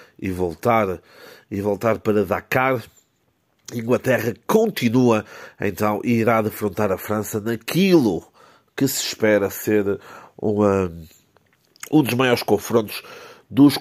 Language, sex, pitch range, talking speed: Portuguese, male, 100-125 Hz, 105 wpm